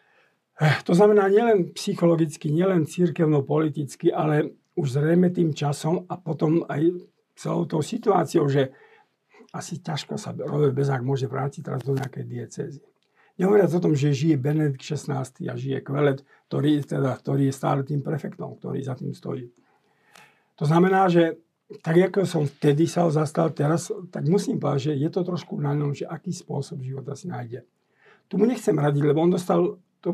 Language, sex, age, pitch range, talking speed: Slovak, male, 50-69, 140-170 Hz, 165 wpm